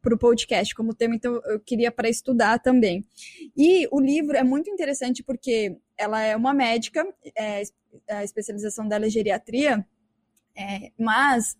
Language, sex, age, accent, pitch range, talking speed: Portuguese, female, 20-39, Brazilian, 225-265 Hz, 150 wpm